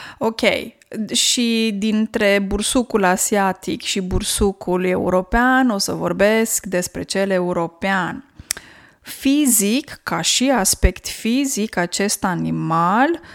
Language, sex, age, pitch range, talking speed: Romanian, female, 20-39, 180-220 Hz, 95 wpm